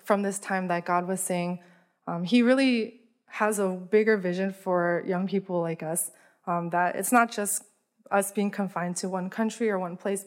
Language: English